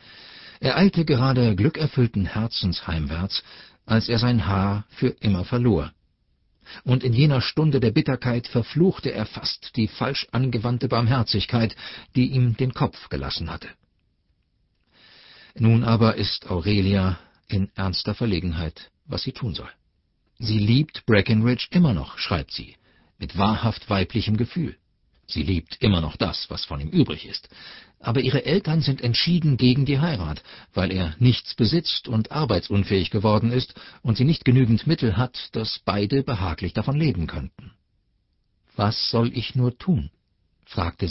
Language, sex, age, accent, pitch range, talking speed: German, male, 50-69, German, 95-125 Hz, 145 wpm